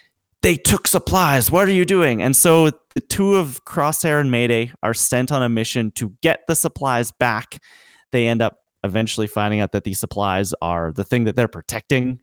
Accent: American